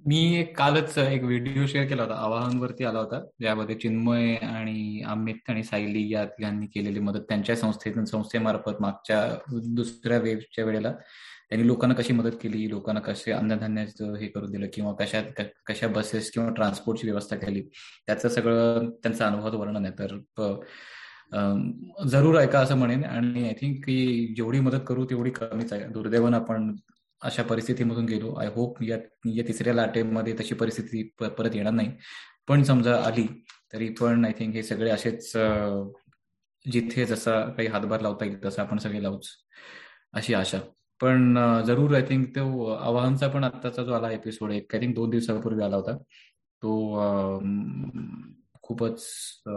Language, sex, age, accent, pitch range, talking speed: Marathi, male, 20-39, native, 105-120 Hz, 155 wpm